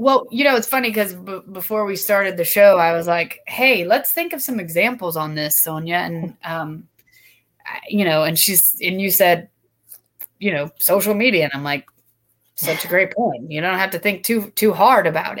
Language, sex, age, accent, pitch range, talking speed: English, female, 20-39, American, 175-230 Hz, 210 wpm